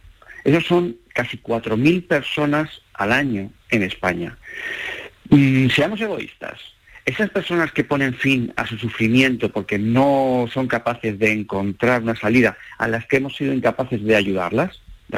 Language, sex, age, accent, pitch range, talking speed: Spanish, male, 50-69, Spanish, 115-150 Hz, 145 wpm